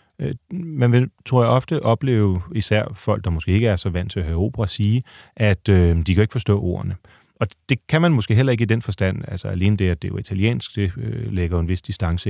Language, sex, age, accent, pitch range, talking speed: Danish, male, 30-49, native, 95-115 Hz, 250 wpm